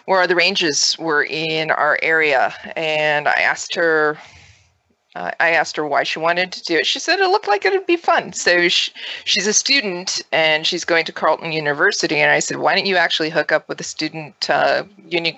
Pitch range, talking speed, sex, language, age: 155-205 Hz, 215 wpm, female, English, 20-39